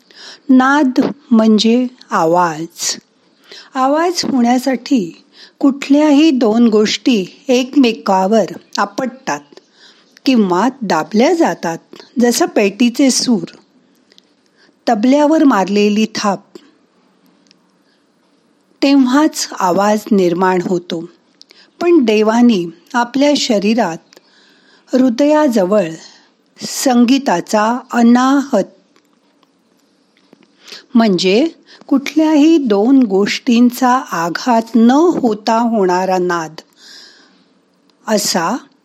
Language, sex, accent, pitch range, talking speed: Marathi, female, native, 205-275 Hz, 60 wpm